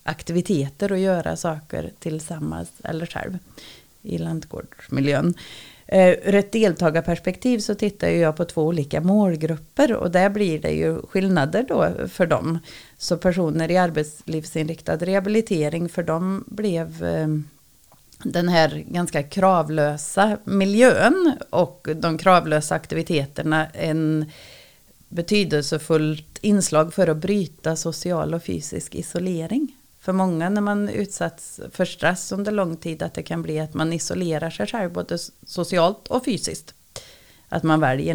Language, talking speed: Swedish, 125 wpm